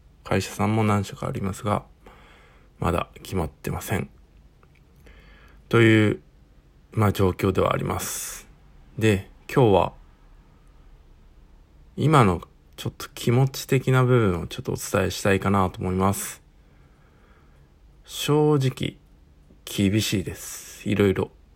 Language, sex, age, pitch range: Japanese, male, 50-69, 75-105 Hz